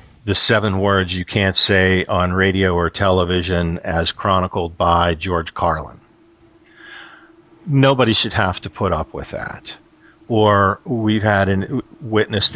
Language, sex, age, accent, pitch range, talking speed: English, male, 50-69, American, 90-105 Hz, 135 wpm